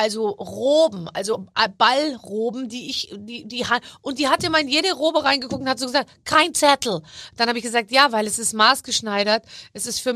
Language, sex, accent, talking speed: German, female, German, 205 wpm